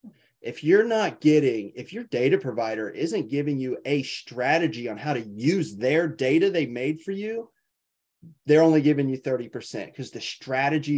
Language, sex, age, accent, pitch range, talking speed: English, male, 30-49, American, 130-160 Hz, 170 wpm